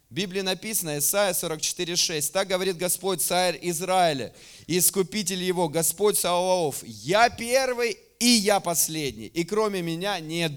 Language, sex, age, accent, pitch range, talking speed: Russian, male, 30-49, native, 150-205 Hz, 130 wpm